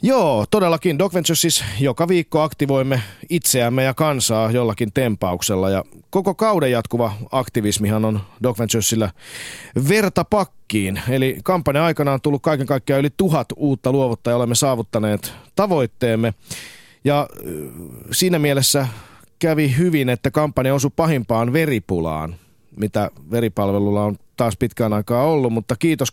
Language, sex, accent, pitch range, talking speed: Finnish, male, native, 110-145 Hz, 125 wpm